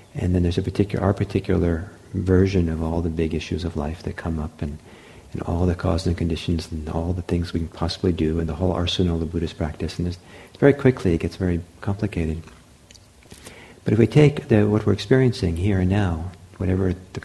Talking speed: 210 wpm